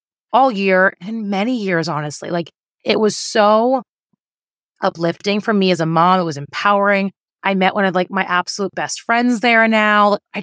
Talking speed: 185 wpm